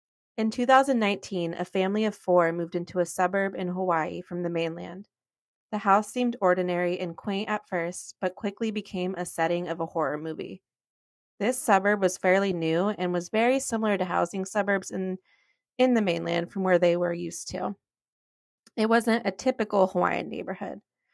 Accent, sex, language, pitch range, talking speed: American, female, English, 180-210 Hz, 170 wpm